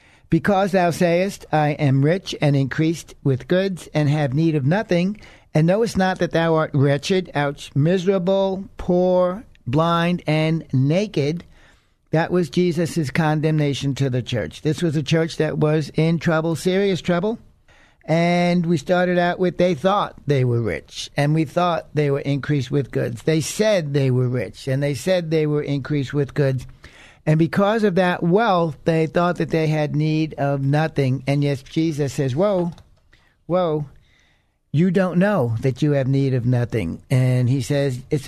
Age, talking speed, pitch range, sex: 60-79, 170 wpm, 140-175 Hz, male